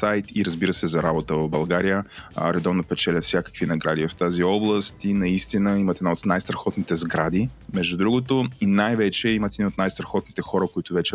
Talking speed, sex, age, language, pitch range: 180 wpm, male, 30-49, Bulgarian, 85-100 Hz